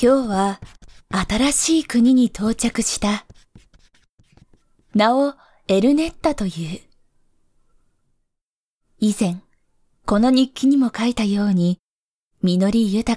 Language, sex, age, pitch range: Japanese, female, 20-39, 190-245 Hz